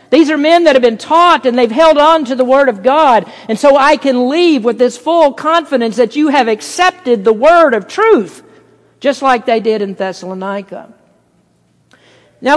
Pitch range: 200-260 Hz